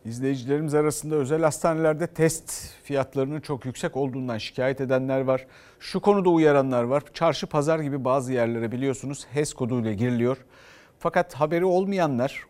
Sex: male